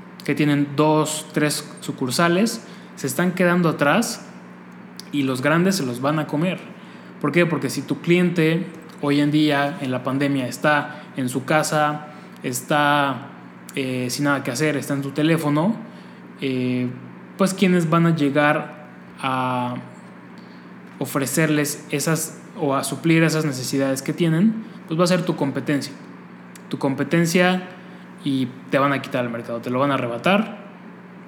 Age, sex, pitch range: 20-39, male, 135-170 Hz